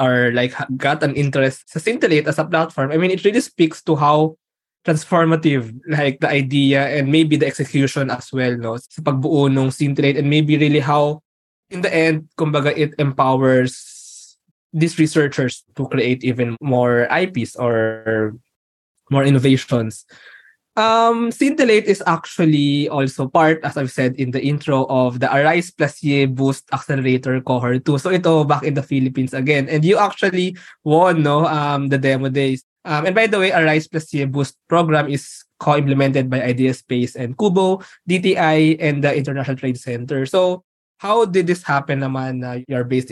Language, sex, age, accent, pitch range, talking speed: Filipino, male, 20-39, native, 130-160 Hz, 165 wpm